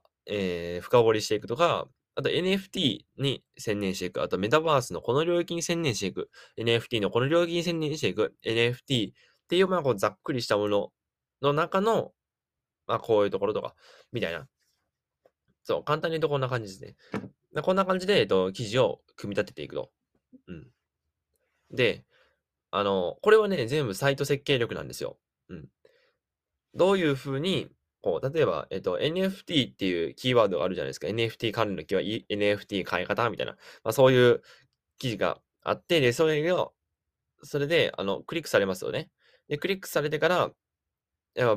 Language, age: Japanese, 20-39